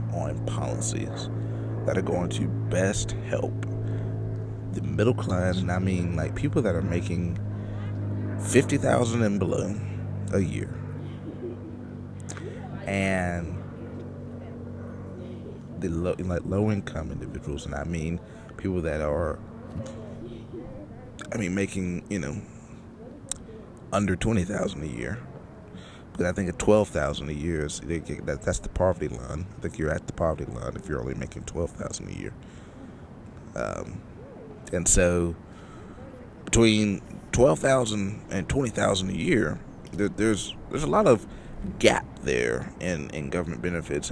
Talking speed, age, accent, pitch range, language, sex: 125 wpm, 30-49, American, 90-110 Hz, English, male